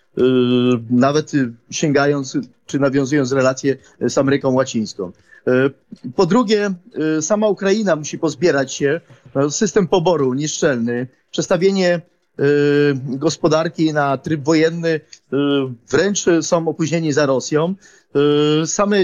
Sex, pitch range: male, 145-180 Hz